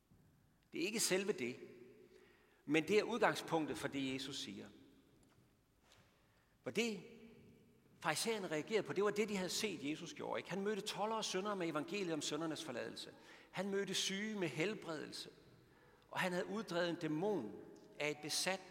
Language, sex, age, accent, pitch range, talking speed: Danish, male, 60-79, native, 155-215 Hz, 155 wpm